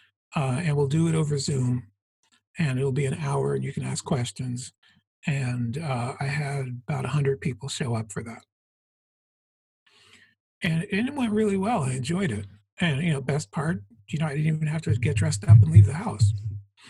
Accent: American